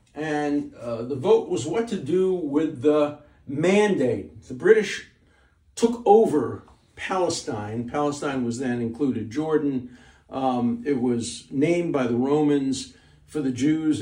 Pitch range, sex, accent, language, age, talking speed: 125-170 Hz, male, American, English, 50-69, 135 wpm